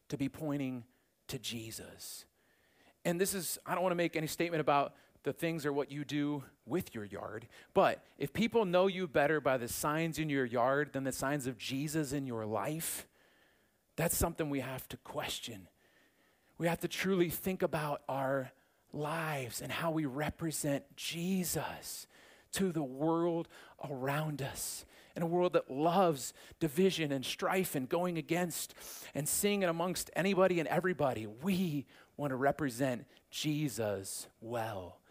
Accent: American